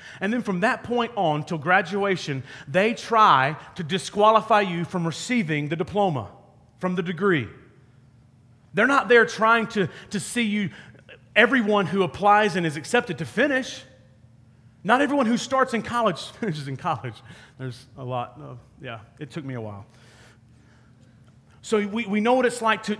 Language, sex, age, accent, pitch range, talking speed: English, male, 40-59, American, 135-210 Hz, 160 wpm